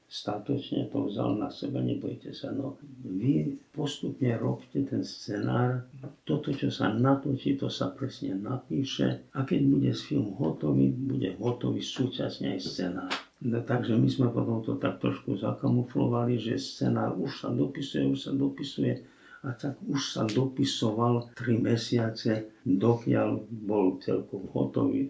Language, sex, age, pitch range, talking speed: Slovak, male, 50-69, 105-135 Hz, 140 wpm